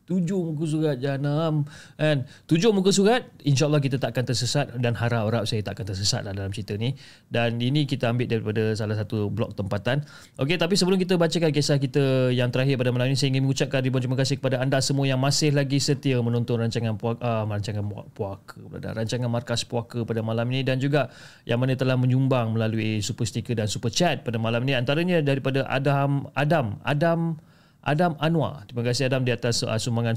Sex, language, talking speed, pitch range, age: male, Malay, 195 wpm, 115-150 Hz, 30-49